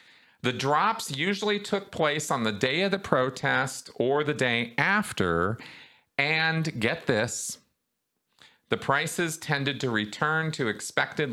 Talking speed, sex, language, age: 130 wpm, male, English, 40-59